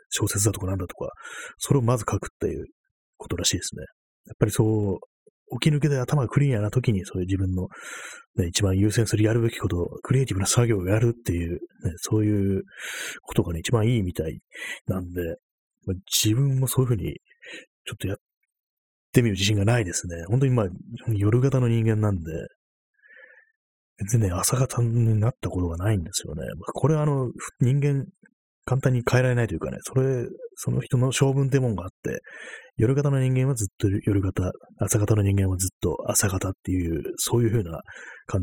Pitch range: 95-130 Hz